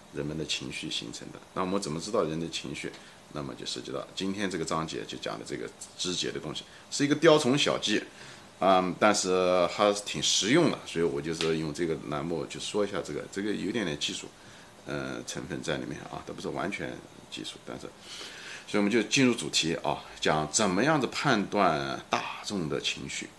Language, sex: Chinese, male